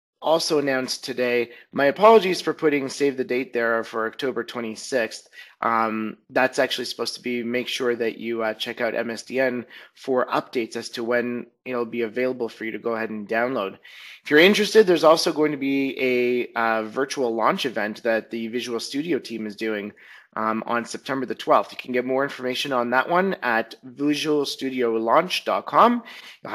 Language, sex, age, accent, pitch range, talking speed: English, male, 30-49, American, 115-135 Hz, 180 wpm